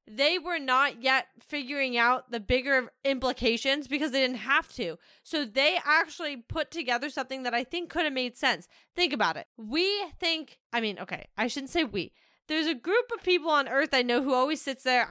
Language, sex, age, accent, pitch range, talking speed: English, female, 10-29, American, 240-305 Hz, 205 wpm